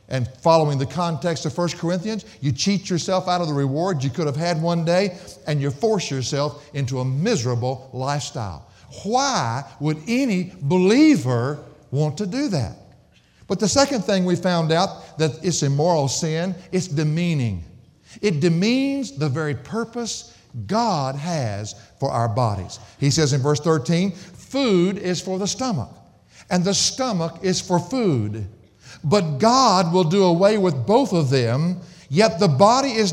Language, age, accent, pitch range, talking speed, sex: English, 60-79, American, 135-195 Hz, 160 wpm, male